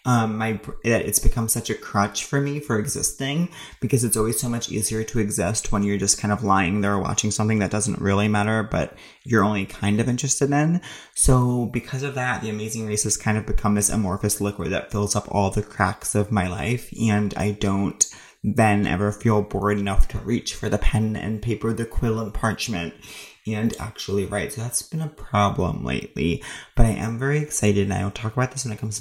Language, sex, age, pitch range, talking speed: English, male, 20-39, 100-115 Hz, 215 wpm